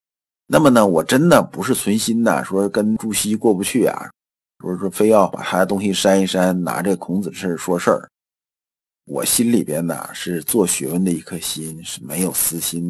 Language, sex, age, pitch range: Chinese, male, 50-69, 85-135 Hz